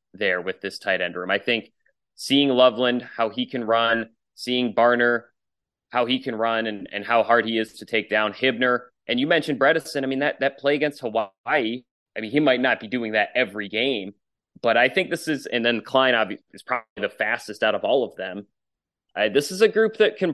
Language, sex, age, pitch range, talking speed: English, male, 30-49, 105-130 Hz, 225 wpm